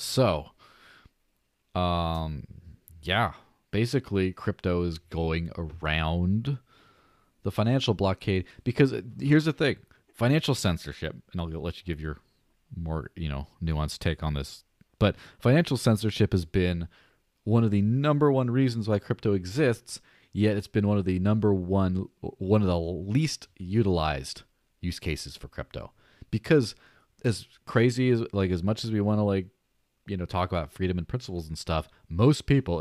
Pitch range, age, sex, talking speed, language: 85-115 Hz, 30-49, male, 155 wpm, English